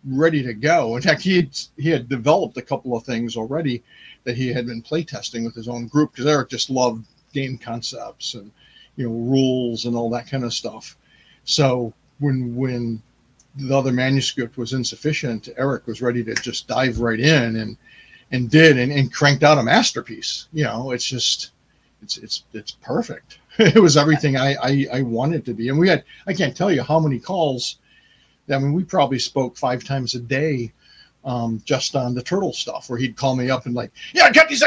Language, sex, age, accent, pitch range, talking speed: English, male, 50-69, American, 120-155 Hz, 205 wpm